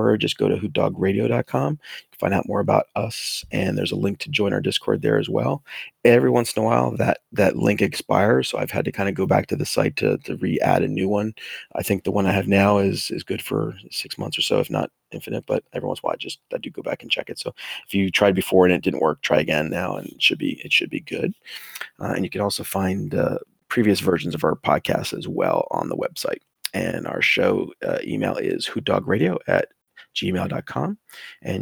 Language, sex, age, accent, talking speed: English, male, 30-49, American, 245 wpm